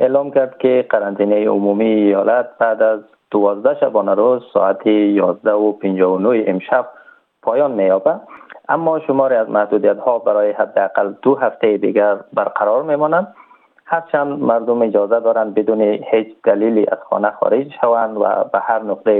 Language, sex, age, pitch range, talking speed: Persian, male, 30-49, 100-125 Hz, 140 wpm